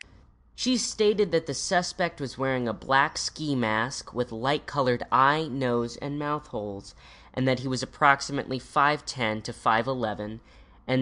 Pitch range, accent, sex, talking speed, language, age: 115-150 Hz, American, female, 160 wpm, English, 20-39